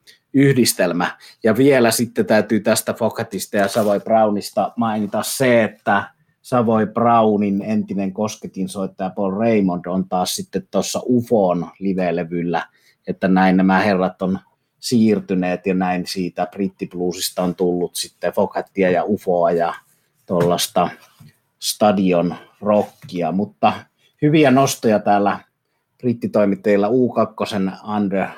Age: 30-49